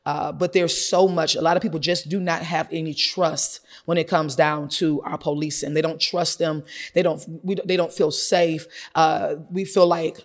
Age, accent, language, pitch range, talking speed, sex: 30-49, American, English, 155-175 Hz, 225 wpm, female